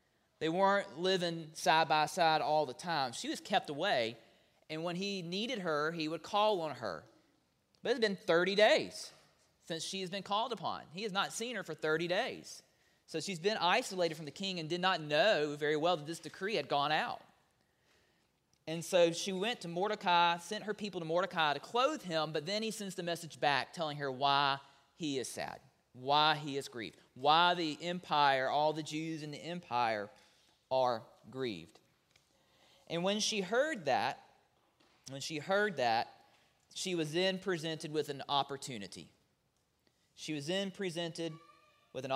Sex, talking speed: male, 180 wpm